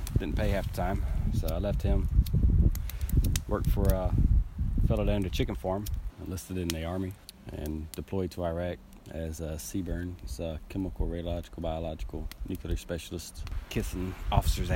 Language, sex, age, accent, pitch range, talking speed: English, male, 30-49, American, 80-95 Hz, 145 wpm